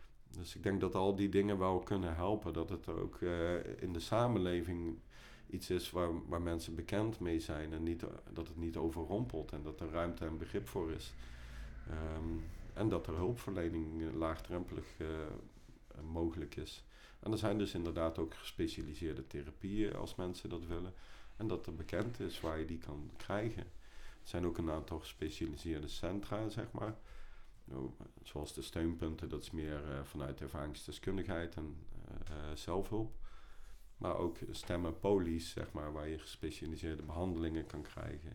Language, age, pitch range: Dutch, 50-69, 80-95 Hz